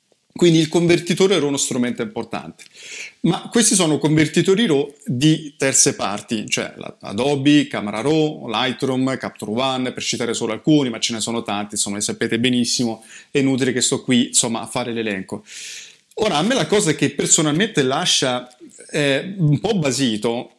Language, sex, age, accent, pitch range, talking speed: Italian, male, 30-49, native, 125-160 Hz, 165 wpm